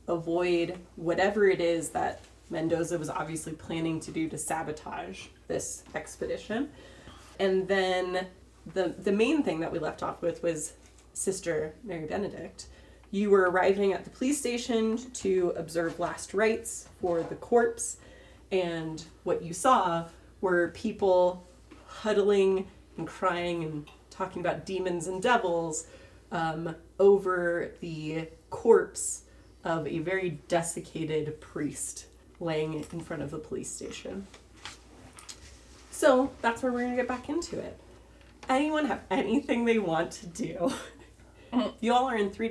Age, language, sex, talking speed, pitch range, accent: 30-49, English, female, 135 wpm, 165-220 Hz, American